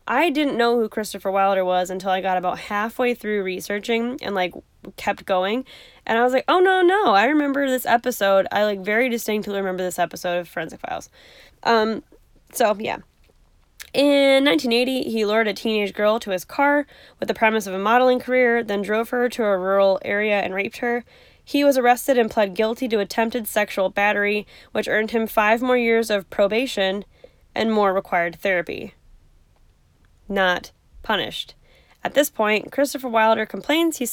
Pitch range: 195-245 Hz